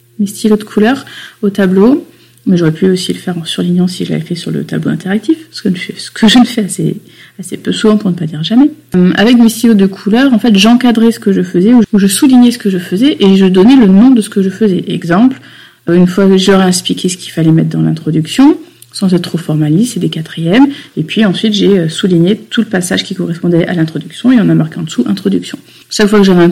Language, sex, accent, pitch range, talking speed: French, female, French, 170-210 Hz, 240 wpm